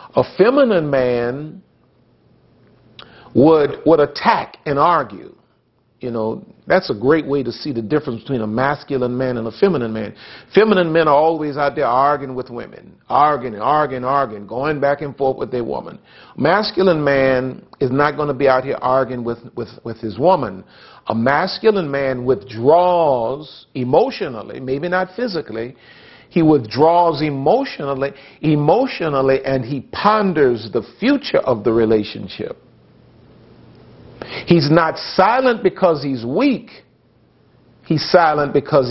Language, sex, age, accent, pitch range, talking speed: English, male, 50-69, American, 125-160 Hz, 135 wpm